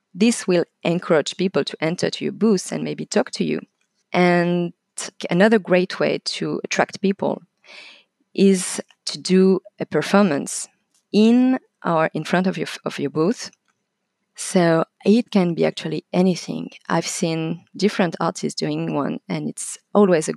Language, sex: English, female